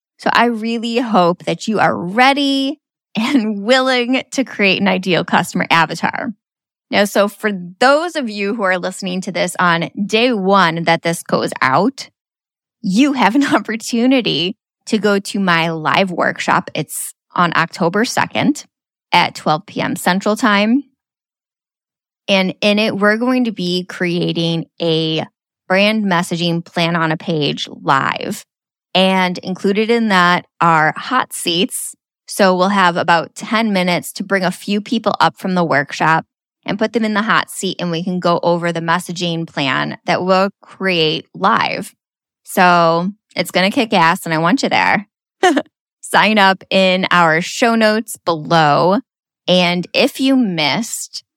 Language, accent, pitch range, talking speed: English, American, 170-220 Hz, 155 wpm